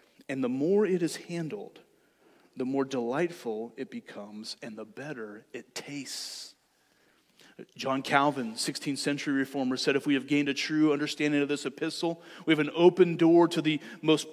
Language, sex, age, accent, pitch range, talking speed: English, male, 30-49, American, 140-185 Hz, 170 wpm